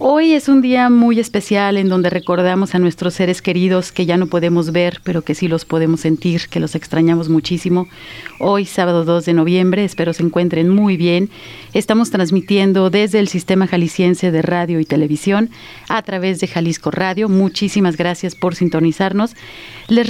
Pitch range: 175-215 Hz